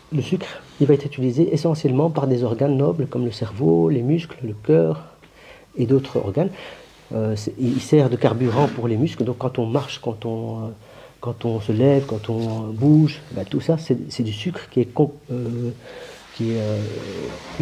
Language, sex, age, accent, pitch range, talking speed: French, male, 40-59, French, 115-145 Hz, 190 wpm